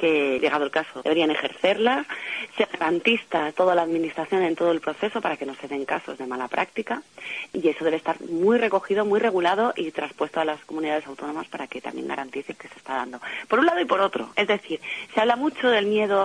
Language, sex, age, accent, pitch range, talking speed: Spanish, female, 30-49, Spanish, 165-235 Hz, 220 wpm